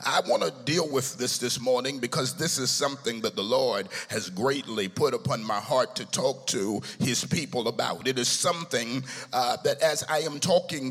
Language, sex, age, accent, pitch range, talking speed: English, male, 50-69, American, 125-165 Hz, 200 wpm